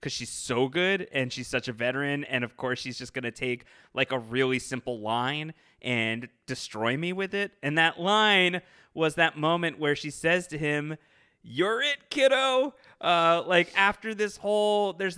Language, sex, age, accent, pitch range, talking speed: English, male, 20-39, American, 125-180 Hz, 185 wpm